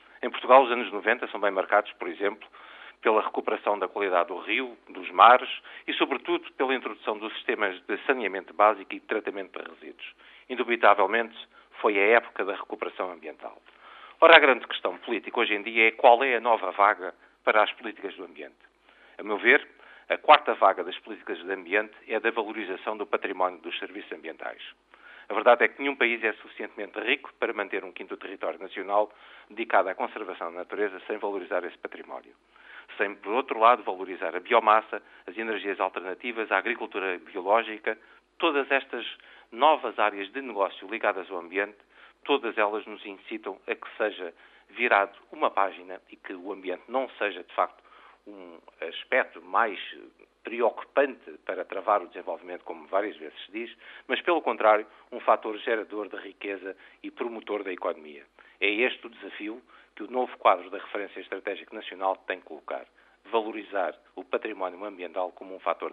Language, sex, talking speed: Portuguese, male, 170 wpm